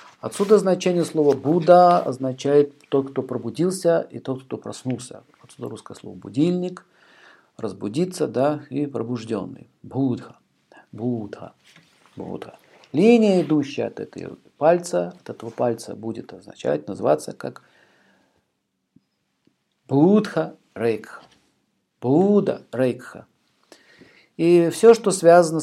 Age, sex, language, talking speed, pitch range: 50-69, male, Russian, 100 wpm, 125-170 Hz